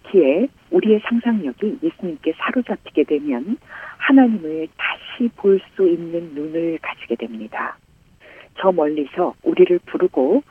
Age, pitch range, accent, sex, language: 50-69, 155-240 Hz, native, female, Korean